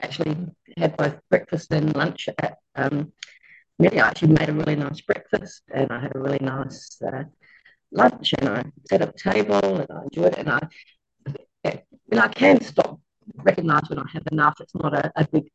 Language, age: English, 30-49